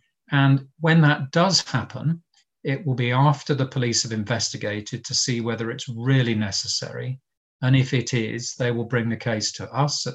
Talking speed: 185 wpm